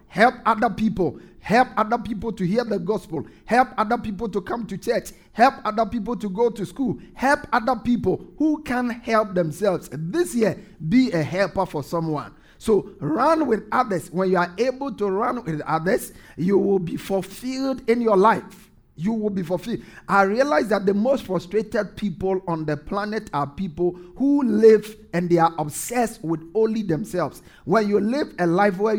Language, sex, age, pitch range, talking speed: English, male, 50-69, 175-230 Hz, 180 wpm